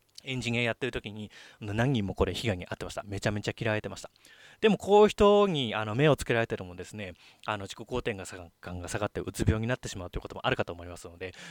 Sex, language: male, Japanese